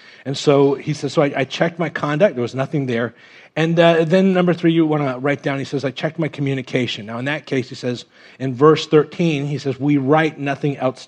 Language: English